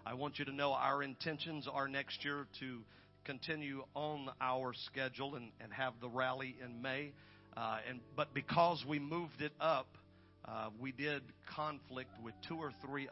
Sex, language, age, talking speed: male, English, 50-69, 175 wpm